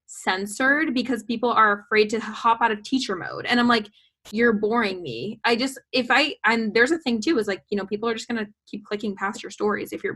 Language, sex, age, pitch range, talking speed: English, female, 10-29, 210-255 Hz, 255 wpm